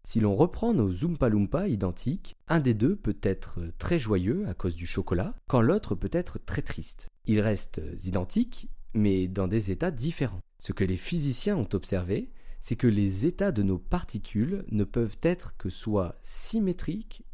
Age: 30-49